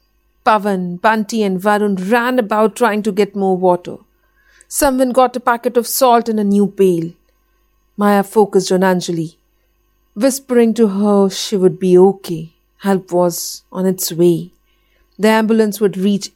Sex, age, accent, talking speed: female, 50-69, native, 150 wpm